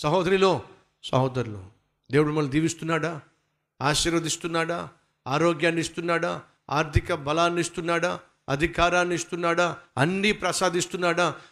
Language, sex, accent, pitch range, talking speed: Telugu, male, native, 120-175 Hz, 80 wpm